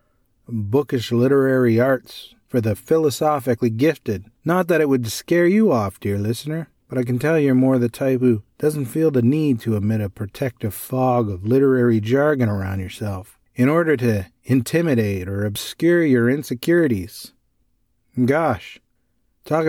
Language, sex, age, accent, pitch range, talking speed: English, male, 40-59, American, 115-150 Hz, 150 wpm